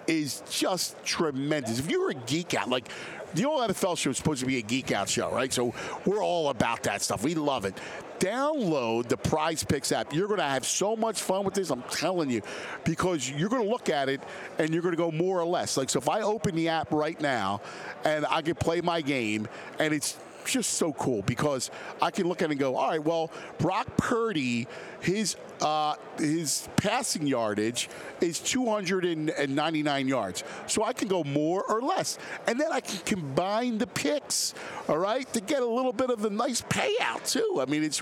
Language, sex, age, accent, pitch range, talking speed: English, male, 50-69, American, 150-215 Hz, 210 wpm